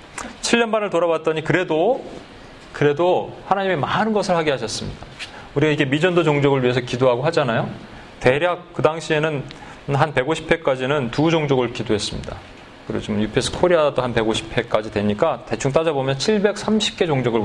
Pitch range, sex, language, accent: 125-160 Hz, male, Korean, native